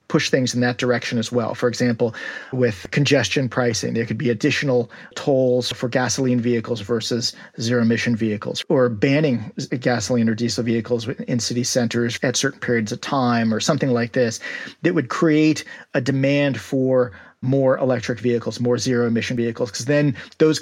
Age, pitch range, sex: 40-59, 120-145 Hz, male